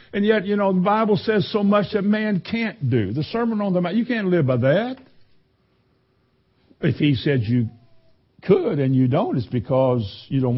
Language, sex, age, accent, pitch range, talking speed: English, male, 60-79, American, 125-175 Hz, 200 wpm